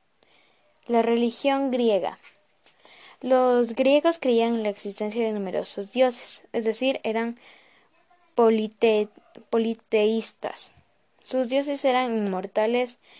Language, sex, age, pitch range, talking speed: Spanish, female, 10-29, 210-255 Hz, 90 wpm